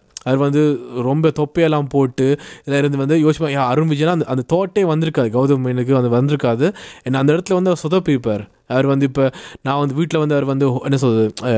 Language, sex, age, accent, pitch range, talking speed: Tamil, male, 20-39, native, 125-160 Hz, 180 wpm